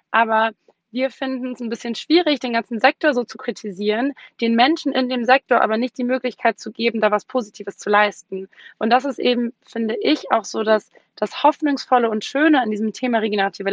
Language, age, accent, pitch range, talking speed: German, 20-39, German, 215-255 Hz, 200 wpm